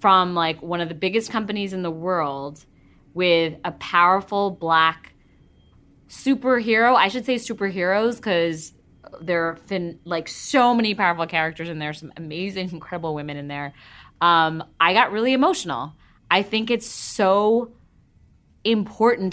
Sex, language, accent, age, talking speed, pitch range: female, English, American, 20-39, 140 wpm, 155-195 Hz